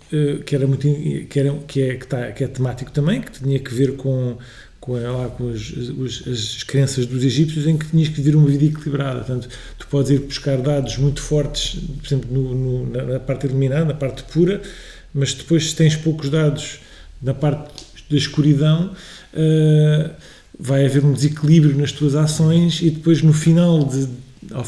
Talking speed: 150 wpm